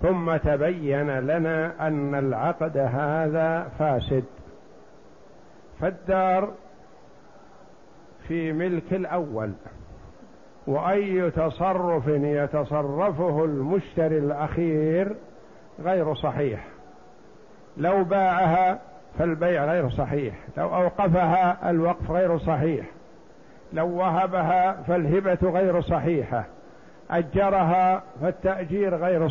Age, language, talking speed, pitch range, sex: 60-79, Arabic, 75 wpm, 155-190 Hz, male